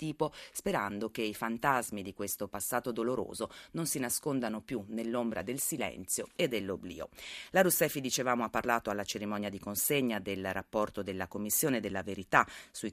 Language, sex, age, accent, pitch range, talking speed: Italian, female, 30-49, native, 105-125 Hz, 160 wpm